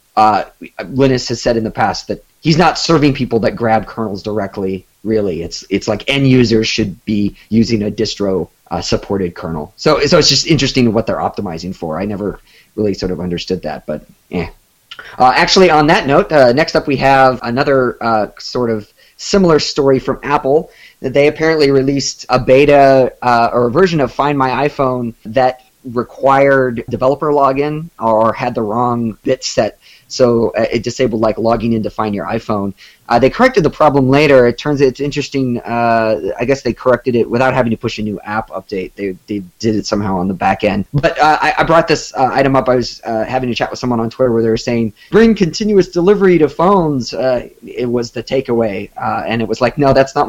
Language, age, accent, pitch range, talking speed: English, 30-49, American, 110-140 Hz, 205 wpm